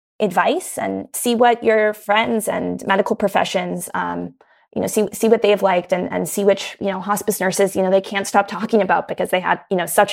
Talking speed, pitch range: 225 wpm, 190-215 Hz